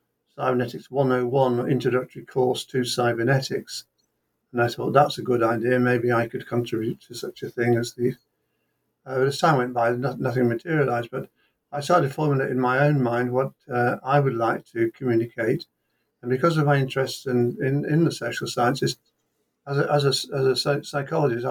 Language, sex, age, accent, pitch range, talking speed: English, male, 50-69, British, 120-135 Hz, 180 wpm